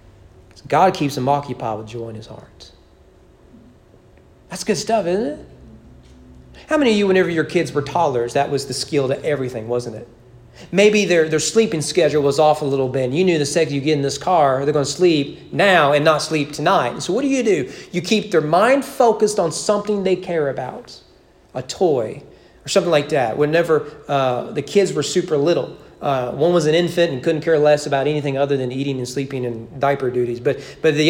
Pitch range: 145-235 Hz